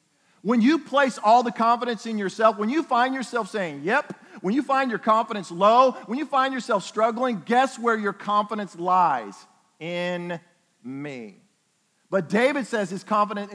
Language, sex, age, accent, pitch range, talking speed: English, male, 50-69, American, 175-235 Hz, 165 wpm